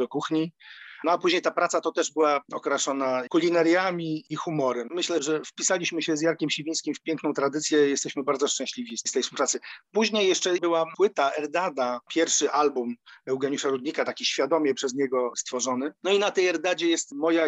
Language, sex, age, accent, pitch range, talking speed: Polish, male, 40-59, native, 135-165 Hz, 175 wpm